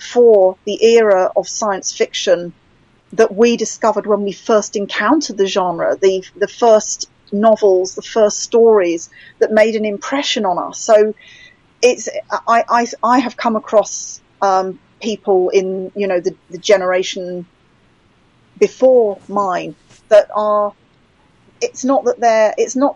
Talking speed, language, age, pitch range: 140 wpm, English, 30-49, 195-250 Hz